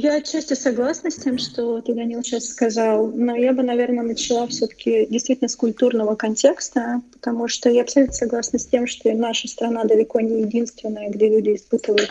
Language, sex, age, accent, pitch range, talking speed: Russian, female, 30-49, native, 210-250 Hz, 185 wpm